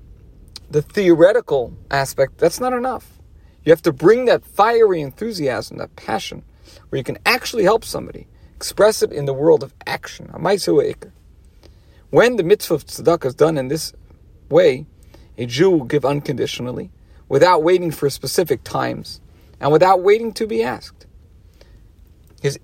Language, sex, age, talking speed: English, male, 50-69, 145 wpm